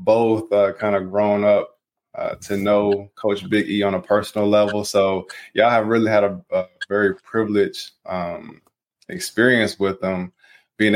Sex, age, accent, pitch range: male, 20-39, American, 100-110 Hz